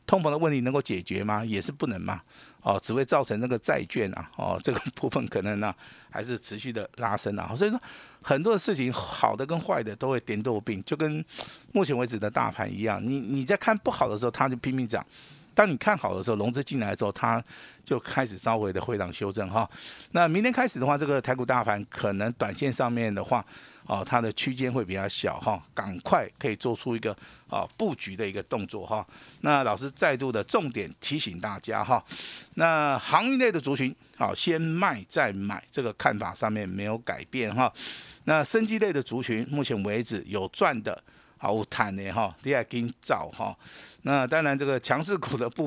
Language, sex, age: Chinese, male, 50-69